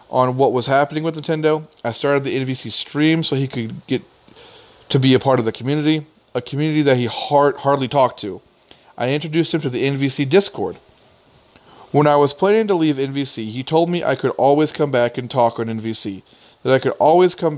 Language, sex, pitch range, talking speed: English, male, 125-155 Hz, 210 wpm